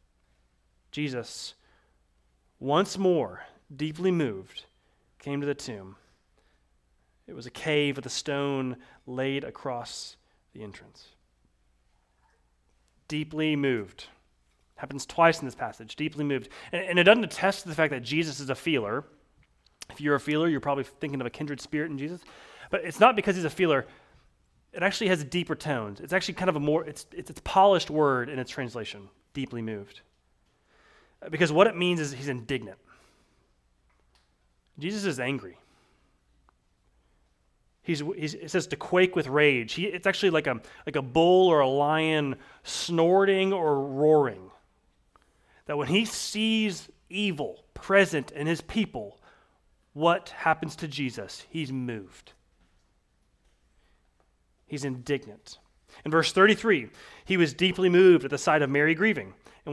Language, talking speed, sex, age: English, 150 wpm, male, 30-49